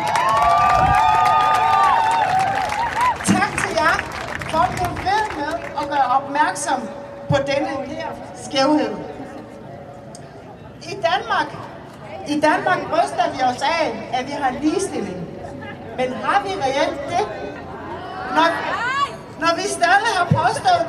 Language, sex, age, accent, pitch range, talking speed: Danish, female, 30-49, native, 255-365 Hz, 105 wpm